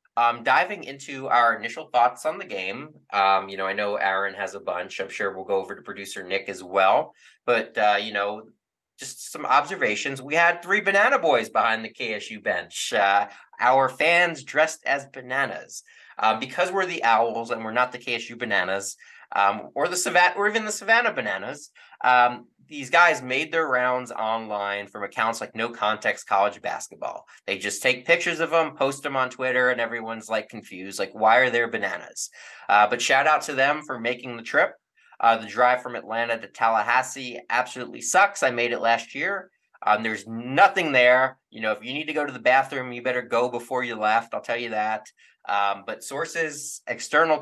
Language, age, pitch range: English, 20-39, 110-150 Hz